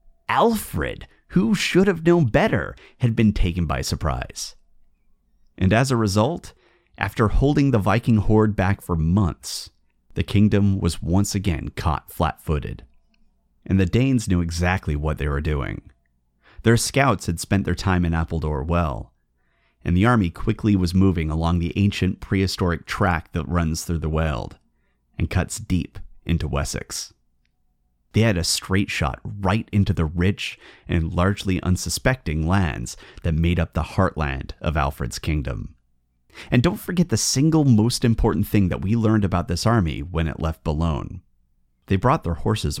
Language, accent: English, American